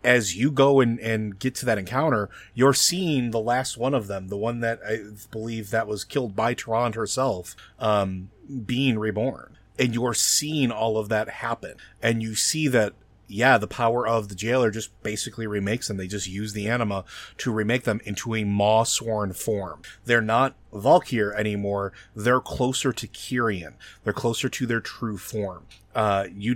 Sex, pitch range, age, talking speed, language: male, 105-125 Hz, 30-49, 180 wpm, English